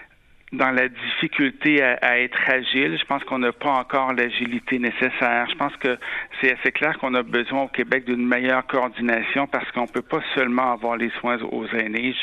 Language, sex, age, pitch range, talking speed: French, male, 60-79, 115-130 Hz, 190 wpm